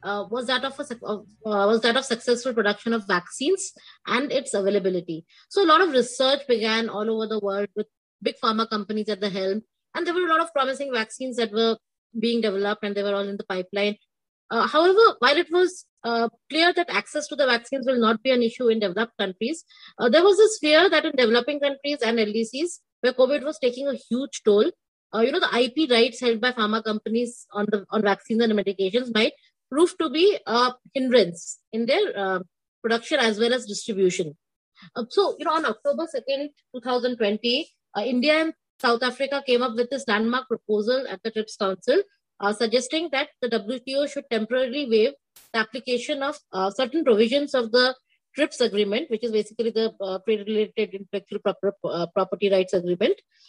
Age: 20-39